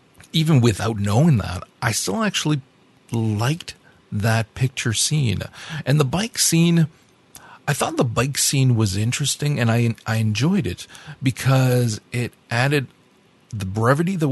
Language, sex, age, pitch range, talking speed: English, male, 40-59, 105-135 Hz, 140 wpm